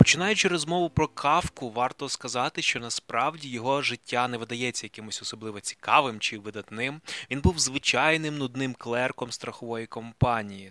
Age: 20-39